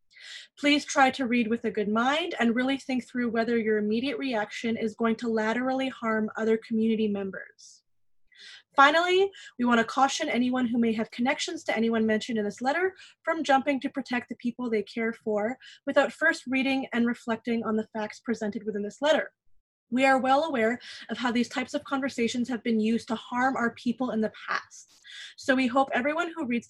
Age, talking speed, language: 20-39, 195 wpm, English